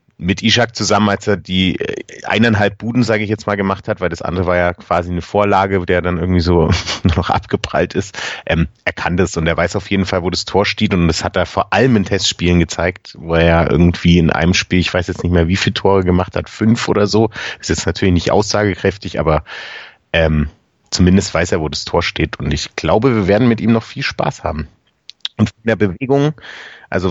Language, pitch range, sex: German, 90-110 Hz, male